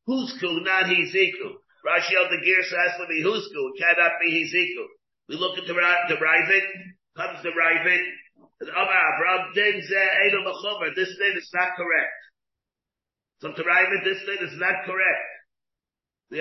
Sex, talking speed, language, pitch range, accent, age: male, 155 wpm, English, 175-280 Hz, American, 50-69